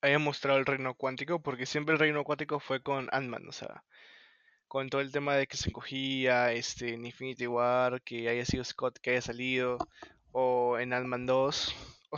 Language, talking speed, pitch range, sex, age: Spanish, 190 wpm, 130-150 Hz, male, 20-39